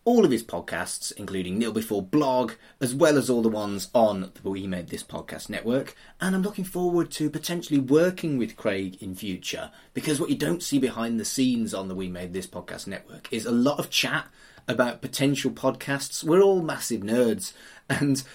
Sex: male